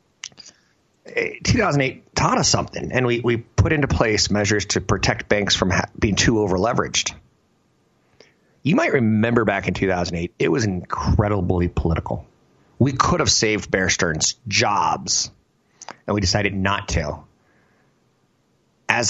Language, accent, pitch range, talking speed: English, American, 95-115 Hz, 130 wpm